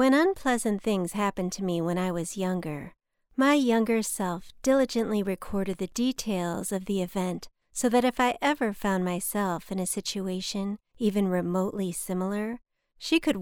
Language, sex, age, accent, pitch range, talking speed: English, female, 50-69, American, 185-230 Hz, 155 wpm